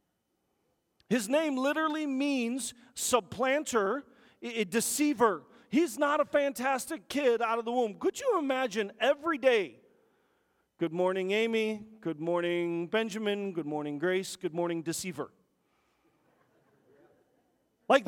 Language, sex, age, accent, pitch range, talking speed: English, male, 40-59, American, 185-255 Hz, 115 wpm